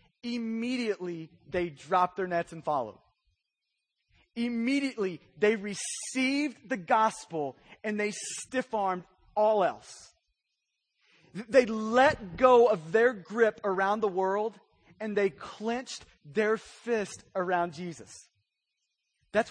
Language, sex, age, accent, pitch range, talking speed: English, male, 30-49, American, 190-245 Hz, 105 wpm